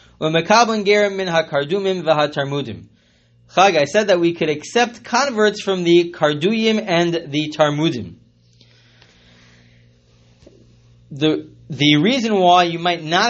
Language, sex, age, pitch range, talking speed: English, male, 30-49, 120-170 Hz, 90 wpm